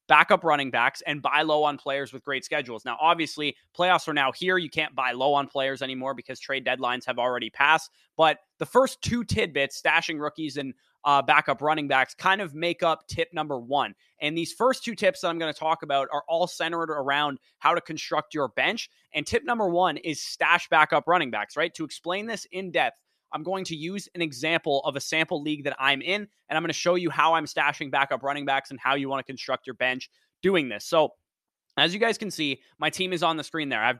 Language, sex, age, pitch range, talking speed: English, male, 20-39, 140-165 Hz, 235 wpm